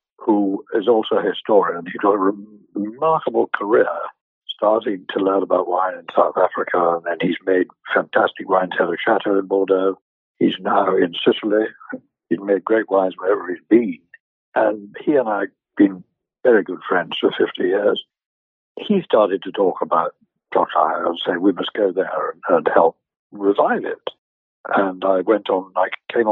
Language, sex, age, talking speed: English, male, 60-79, 170 wpm